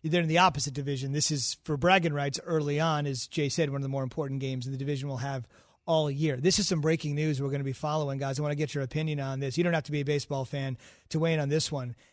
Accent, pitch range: American, 145-185 Hz